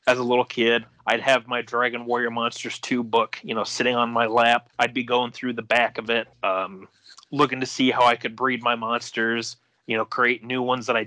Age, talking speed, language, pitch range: 30-49, 235 wpm, English, 120-140 Hz